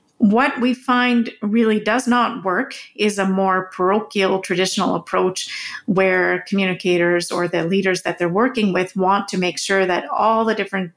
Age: 40-59